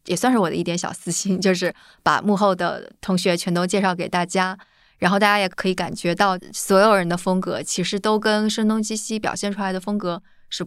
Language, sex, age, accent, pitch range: Chinese, female, 20-39, native, 180-205 Hz